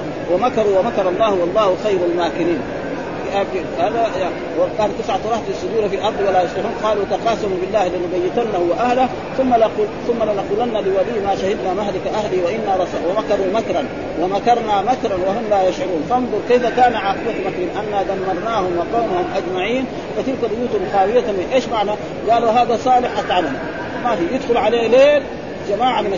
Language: Arabic